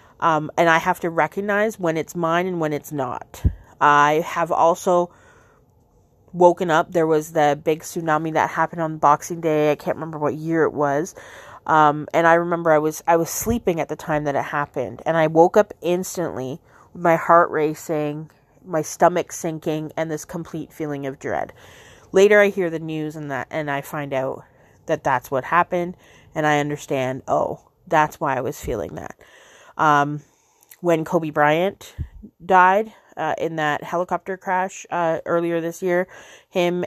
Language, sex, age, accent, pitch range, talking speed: English, female, 30-49, American, 155-175 Hz, 175 wpm